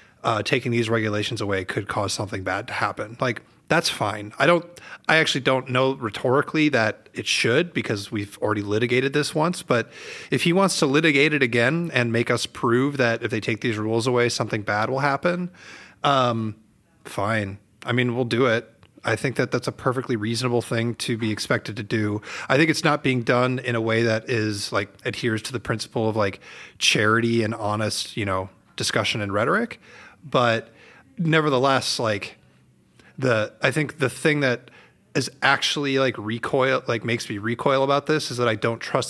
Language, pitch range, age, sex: English, 110-135 Hz, 30-49, male